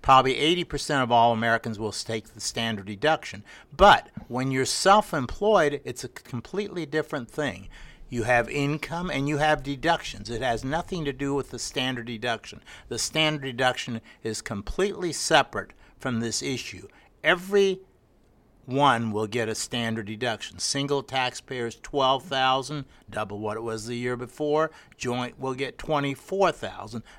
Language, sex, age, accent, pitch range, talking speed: English, male, 60-79, American, 115-150 Hz, 145 wpm